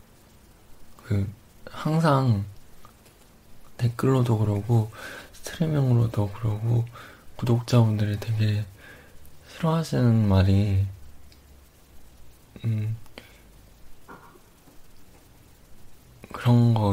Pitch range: 100-120 Hz